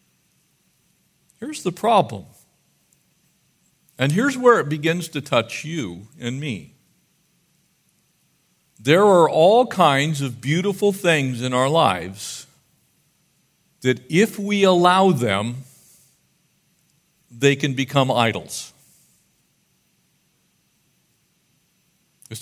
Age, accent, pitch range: 50-69, American, 130-175 Hz